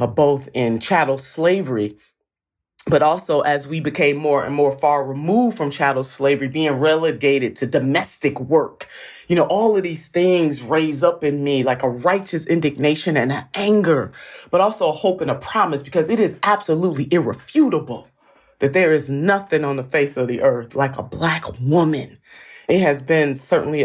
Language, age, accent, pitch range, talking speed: English, 30-49, American, 135-155 Hz, 170 wpm